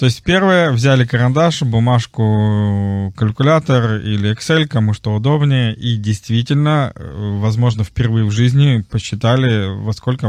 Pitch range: 110-125 Hz